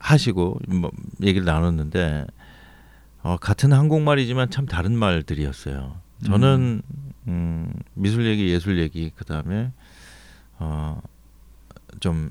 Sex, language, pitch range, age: male, Korean, 80-115 Hz, 40-59